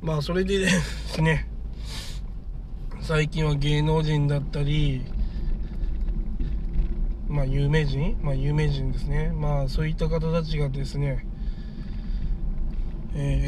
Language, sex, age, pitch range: Japanese, male, 20-39, 140-165 Hz